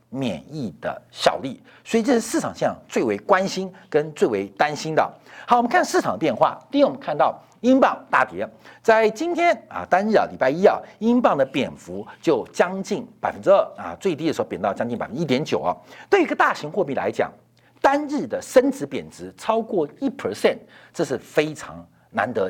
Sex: male